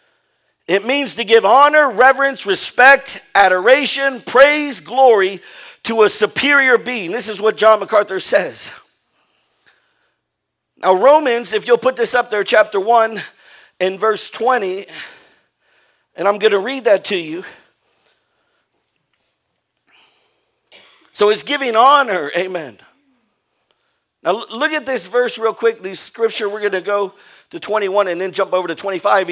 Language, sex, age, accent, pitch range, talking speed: English, male, 50-69, American, 195-270 Hz, 135 wpm